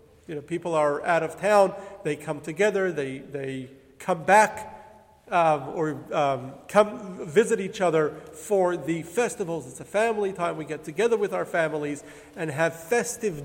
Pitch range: 155-215 Hz